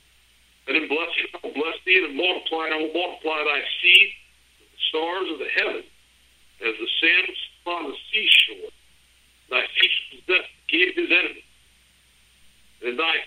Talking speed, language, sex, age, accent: 160 wpm, English, male, 60-79, American